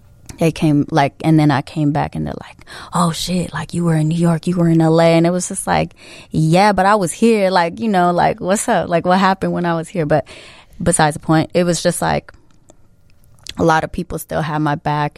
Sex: female